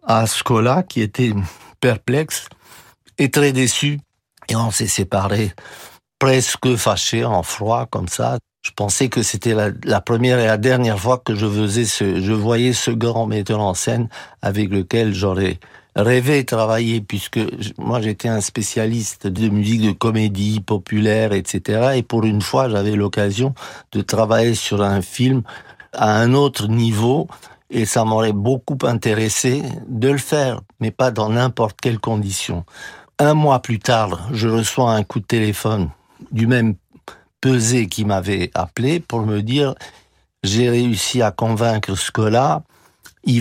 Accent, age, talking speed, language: French, 60-79, 155 wpm, French